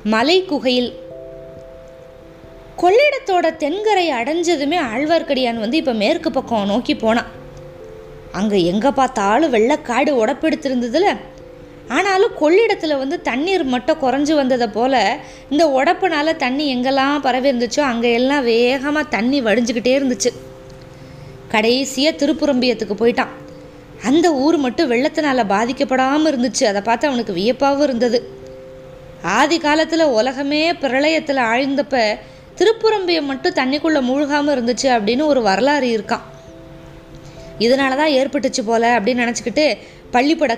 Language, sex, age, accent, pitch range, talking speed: Tamil, female, 20-39, native, 230-295 Hz, 105 wpm